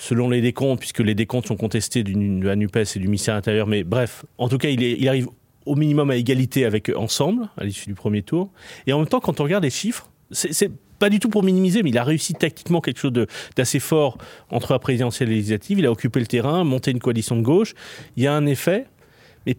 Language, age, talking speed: French, 40-59, 250 wpm